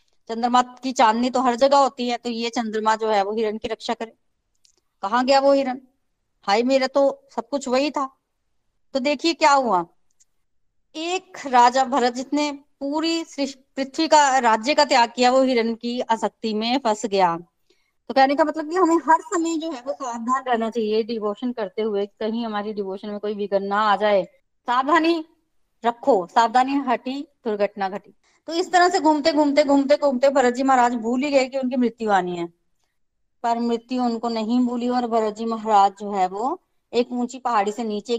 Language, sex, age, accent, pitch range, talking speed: Hindi, female, 20-39, native, 220-275 Hz, 185 wpm